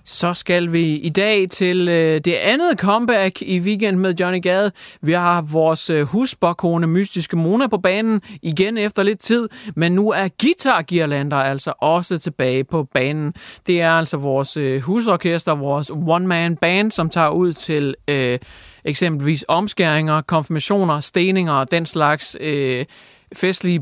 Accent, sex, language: Danish, male, English